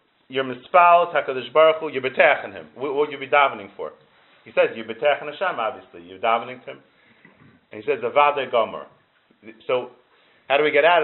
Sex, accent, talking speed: male, American, 180 wpm